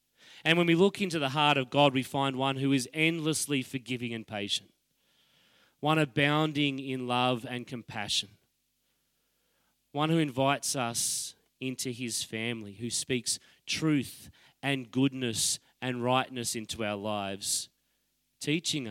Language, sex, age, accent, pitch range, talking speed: English, male, 30-49, Australian, 110-135 Hz, 135 wpm